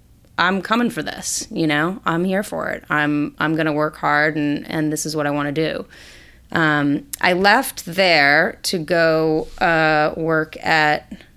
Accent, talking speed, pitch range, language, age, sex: American, 180 wpm, 150-175 Hz, English, 30-49, female